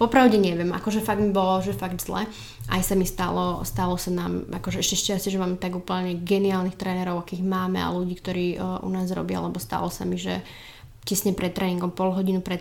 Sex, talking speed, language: female, 215 wpm, Slovak